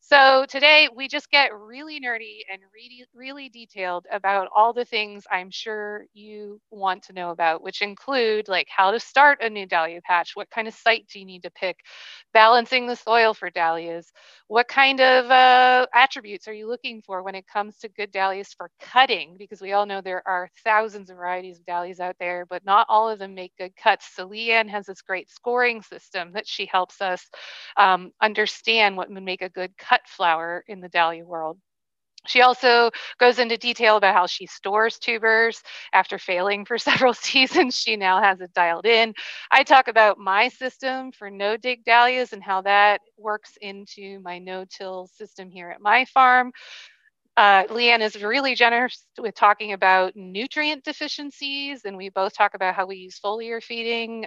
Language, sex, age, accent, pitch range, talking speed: English, female, 30-49, American, 190-245 Hz, 185 wpm